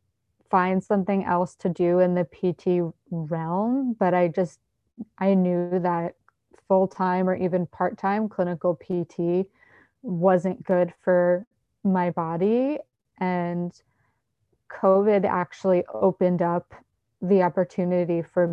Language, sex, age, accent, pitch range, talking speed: English, female, 20-39, American, 175-195 Hz, 110 wpm